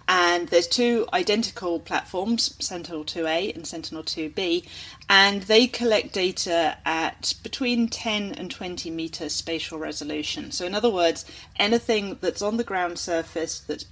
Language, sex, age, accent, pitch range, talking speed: English, female, 40-59, British, 155-205 Hz, 135 wpm